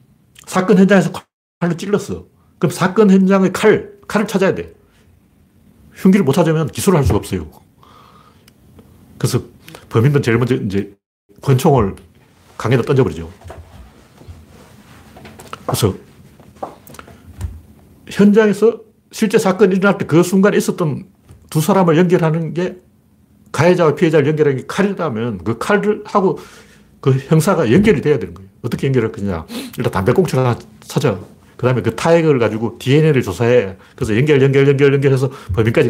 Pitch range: 115-180 Hz